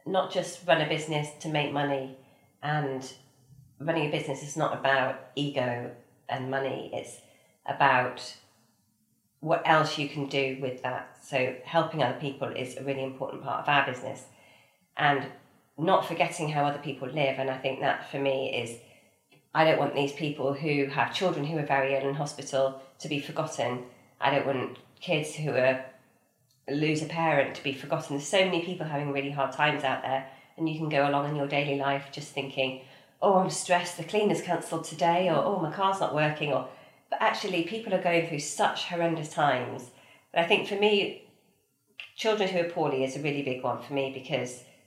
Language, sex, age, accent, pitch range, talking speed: English, female, 30-49, British, 135-155 Hz, 190 wpm